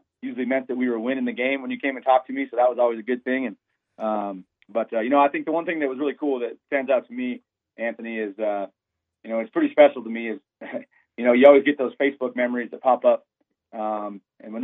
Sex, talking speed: male, 275 wpm